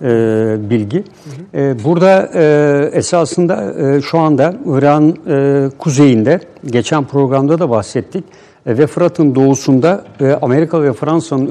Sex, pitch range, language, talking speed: male, 130-165 Hz, Turkish, 90 wpm